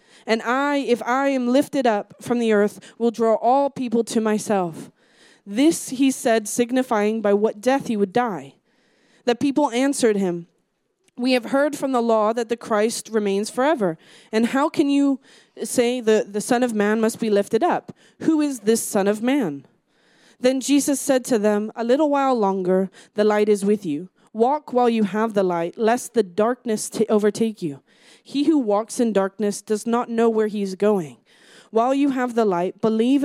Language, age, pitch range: English, 20-39, 210-255 Hz